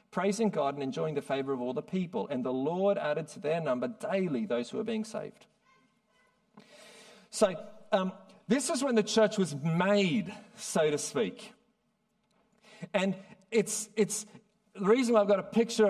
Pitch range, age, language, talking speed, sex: 180-215 Hz, 40-59, English, 170 wpm, male